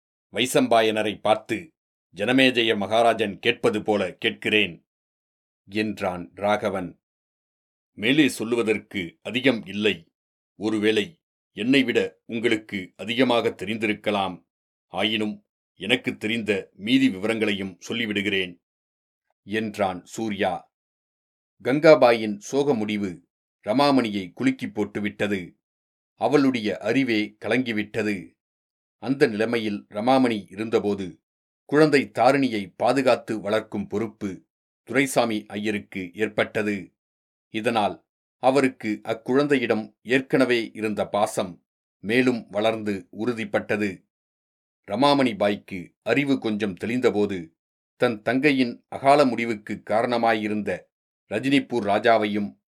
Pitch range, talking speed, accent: 100-120 Hz, 75 wpm, native